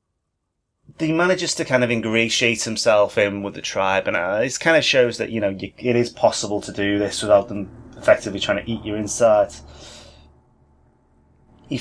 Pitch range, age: 90-120 Hz, 30-49